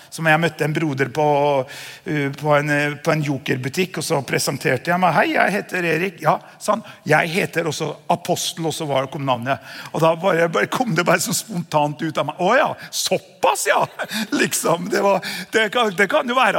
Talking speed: 205 wpm